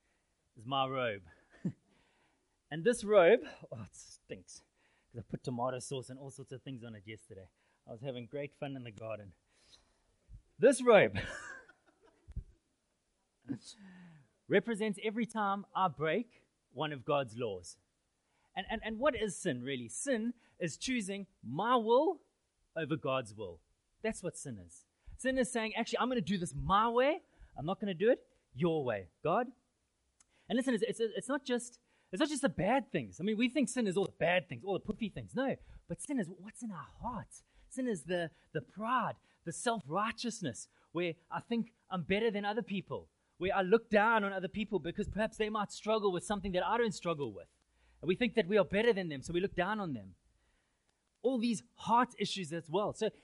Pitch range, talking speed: 150-230 Hz, 190 wpm